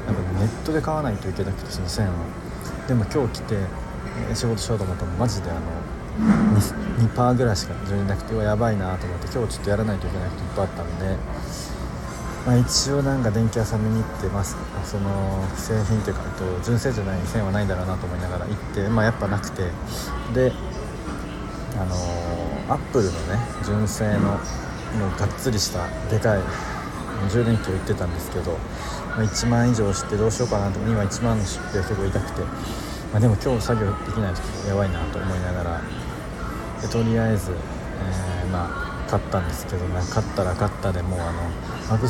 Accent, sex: native, male